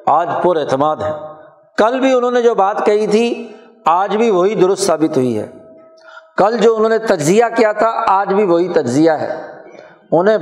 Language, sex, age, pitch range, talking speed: Urdu, male, 60-79, 175-240 Hz, 185 wpm